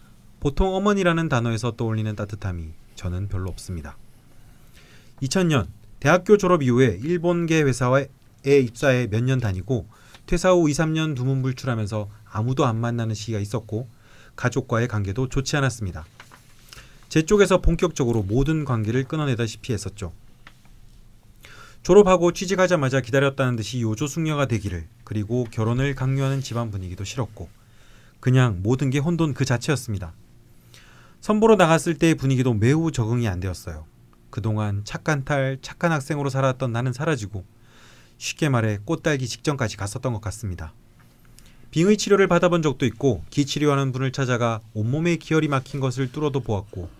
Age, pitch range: 30-49, 110-150 Hz